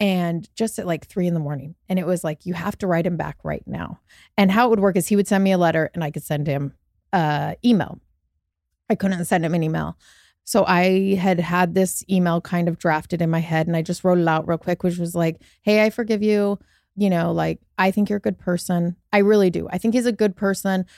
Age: 30-49